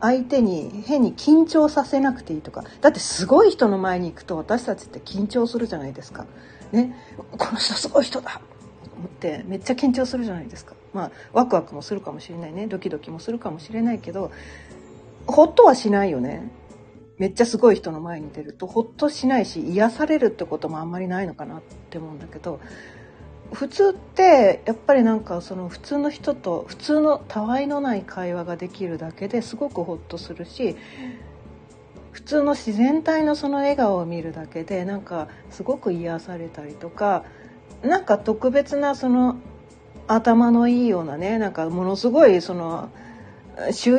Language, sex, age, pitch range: Japanese, female, 40-59, 175-260 Hz